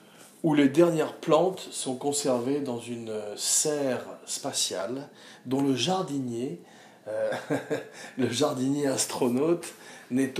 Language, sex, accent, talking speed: French, male, French, 105 wpm